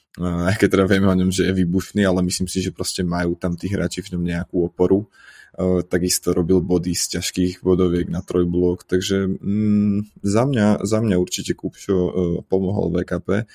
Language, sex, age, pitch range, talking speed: Slovak, male, 20-39, 90-95 Hz, 185 wpm